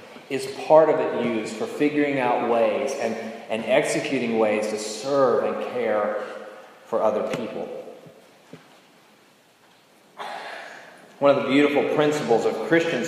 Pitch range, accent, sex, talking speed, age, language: 125-150 Hz, American, male, 125 wpm, 30-49, English